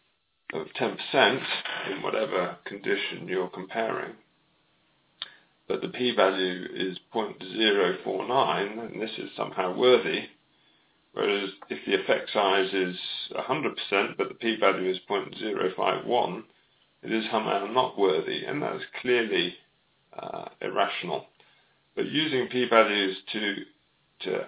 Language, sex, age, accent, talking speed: English, male, 40-59, British, 130 wpm